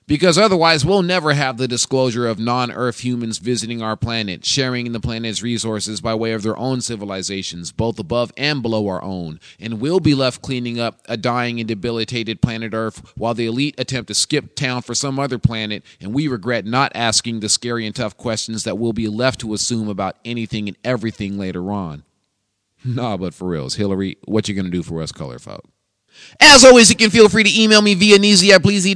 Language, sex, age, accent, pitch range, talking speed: English, male, 30-49, American, 115-145 Hz, 205 wpm